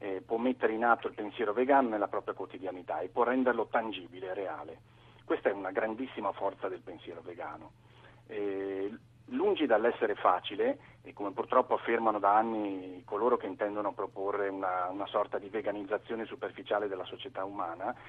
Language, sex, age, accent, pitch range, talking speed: Italian, male, 40-59, native, 105-130 Hz, 155 wpm